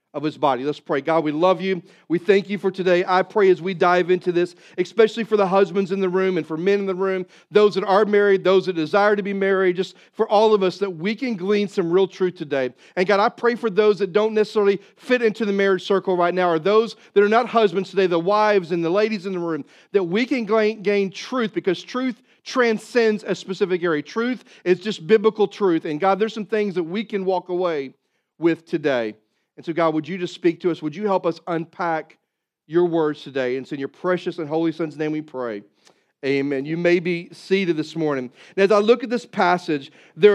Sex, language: male, English